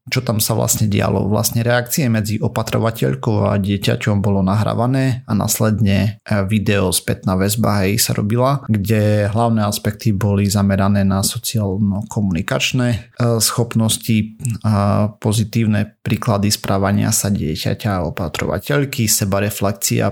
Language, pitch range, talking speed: Slovak, 105-115 Hz, 115 wpm